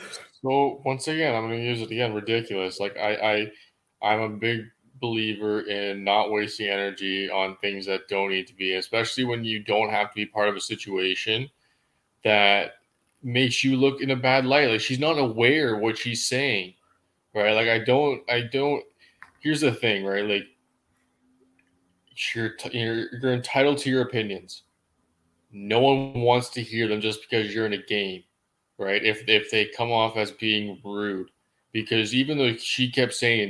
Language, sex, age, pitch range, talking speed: English, male, 20-39, 105-130 Hz, 175 wpm